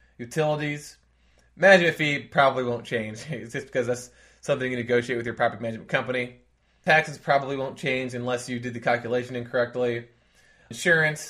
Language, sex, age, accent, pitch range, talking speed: English, male, 20-39, American, 120-140 Hz, 155 wpm